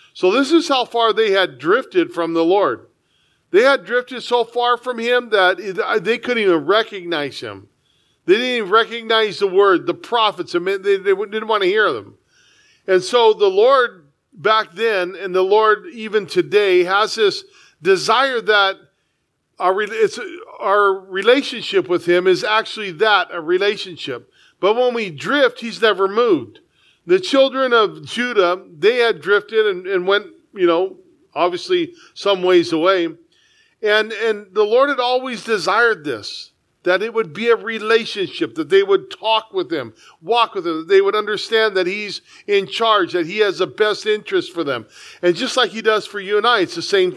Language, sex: English, male